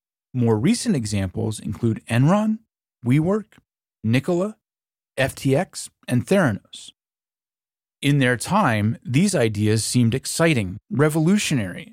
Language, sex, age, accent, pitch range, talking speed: English, male, 30-49, American, 110-145 Hz, 90 wpm